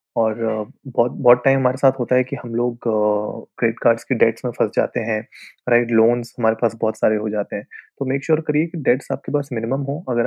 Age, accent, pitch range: 20-39, native, 115-140 Hz